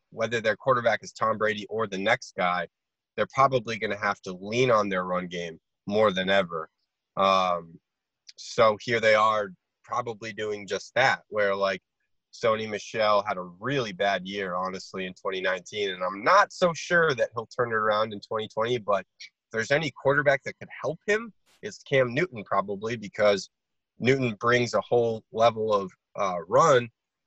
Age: 30-49